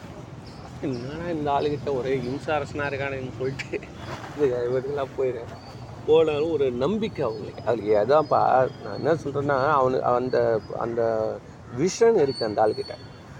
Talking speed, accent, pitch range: 105 wpm, native, 125-150 Hz